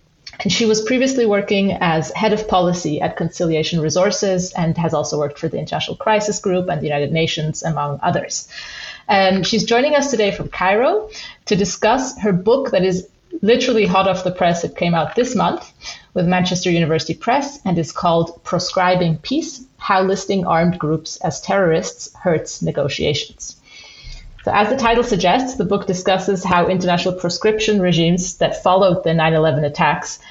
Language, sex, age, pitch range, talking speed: English, female, 30-49, 160-200 Hz, 165 wpm